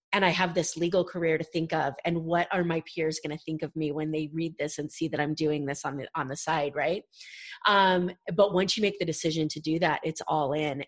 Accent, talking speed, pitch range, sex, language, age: American, 265 wpm, 160-190 Hz, female, English, 30-49